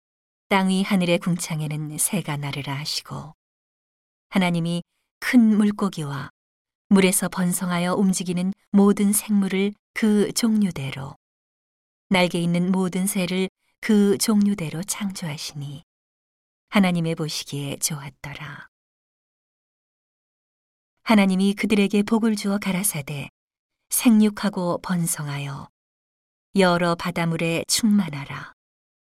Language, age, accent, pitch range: Korean, 40-59, native, 160-205 Hz